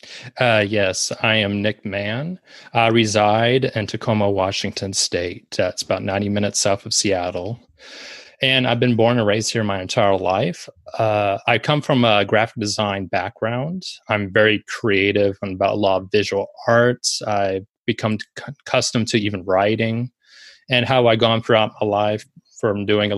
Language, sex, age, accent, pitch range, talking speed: English, male, 30-49, American, 100-115 Hz, 165 wpm